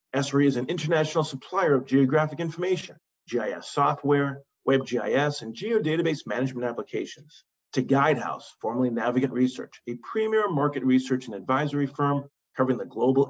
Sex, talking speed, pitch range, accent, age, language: male, 140 wpm, 120-150 Hz, American, 40-59, English